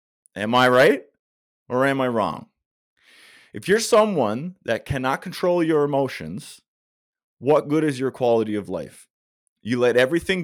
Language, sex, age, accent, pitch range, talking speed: English, male, 30-49, American, 105-145 Hz, 145 wpm